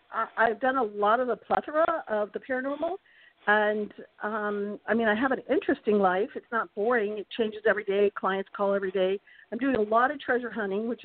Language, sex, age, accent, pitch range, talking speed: English, female, 50-69, American, 200-245 Hz, 205 wpm